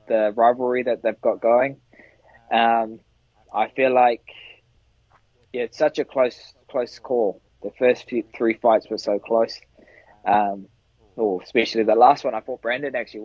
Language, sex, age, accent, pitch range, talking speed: English, male, 20-39, Australian, 115-130 Hz, 165 wpm